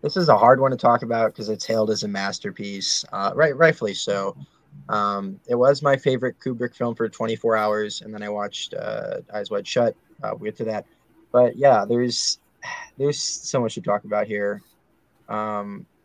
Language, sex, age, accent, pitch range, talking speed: English, male, 20-39, American, 105-130 Hz, 195 wpm